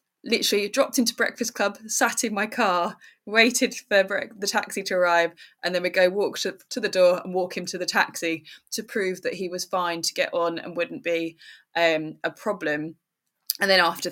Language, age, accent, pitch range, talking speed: English, 20-39, British, 170-215 Hz, 200 wpm